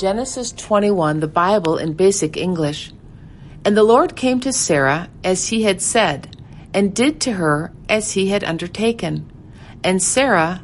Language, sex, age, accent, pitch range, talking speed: English, female, 50-69, American, 155-215 Hz, 150 wpm